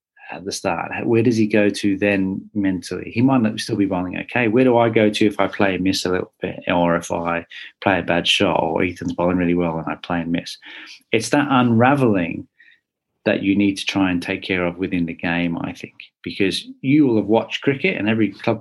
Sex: male